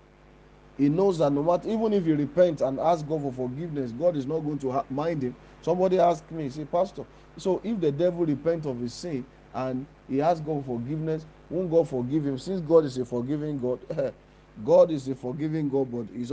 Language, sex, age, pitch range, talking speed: English, male, 50-69, 135-175 Hz, 210 wpm